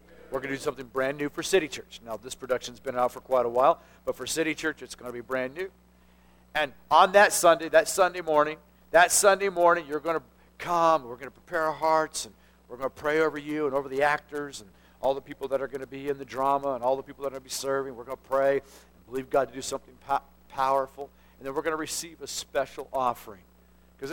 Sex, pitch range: male, 120-165 Hz